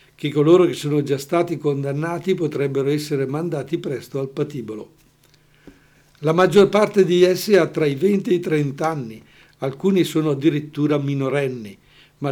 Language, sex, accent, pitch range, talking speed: Italian, male, native, 135-160 Hz, 150 wpm